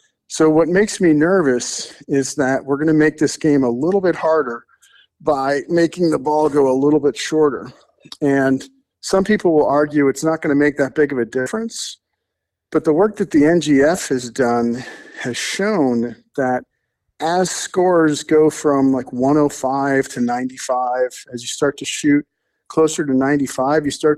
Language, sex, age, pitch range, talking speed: English, male, 50-69, 125-155 Hz, 175 wpm